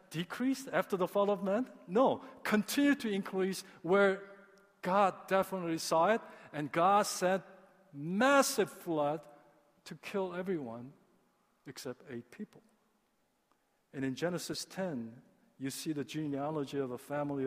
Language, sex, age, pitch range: Korean, male, 50-69, 145-195 Hz